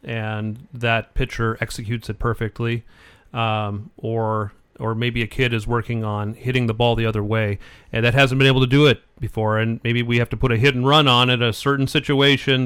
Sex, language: male, English